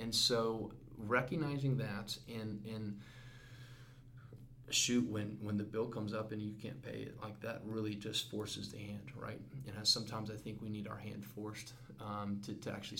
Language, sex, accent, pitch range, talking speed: English, male, American, 105-125 Hz, 180 wpm